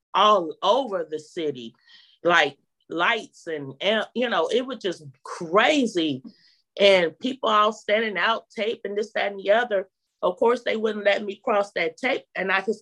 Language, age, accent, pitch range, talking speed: English, 30-49, American, 185-245 Hz, 175 wpm